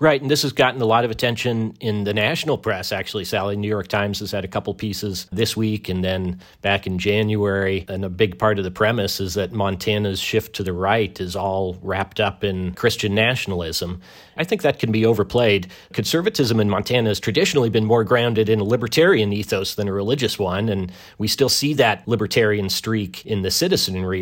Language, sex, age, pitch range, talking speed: English, male, 40-59, 95-115 Hz, 205 wpm